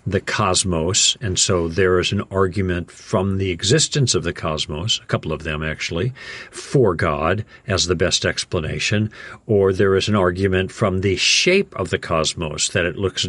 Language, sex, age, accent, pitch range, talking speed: English, male, 50-69, American, 90-120 Hz, 175 wpm